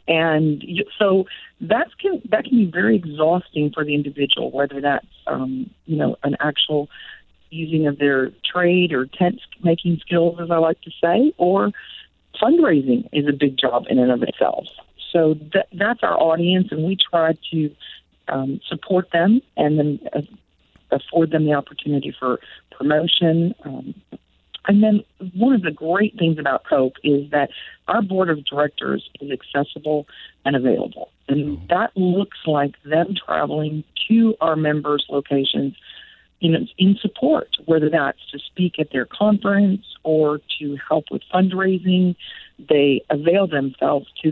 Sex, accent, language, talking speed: female, American, English, 150 wpm